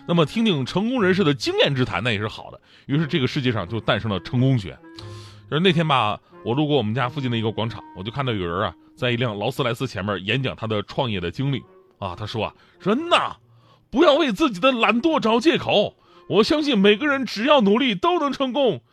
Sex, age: male, 30-49